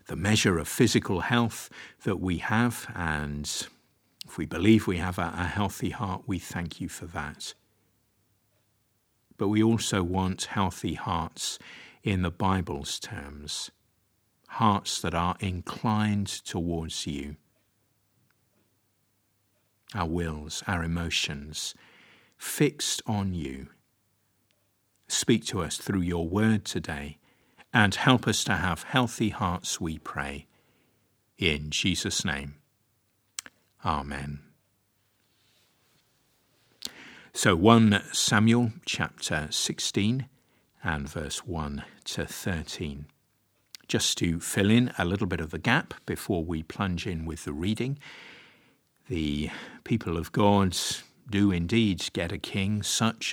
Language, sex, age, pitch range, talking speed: English, male, 50-69, 85-110 Hz, 115 wpm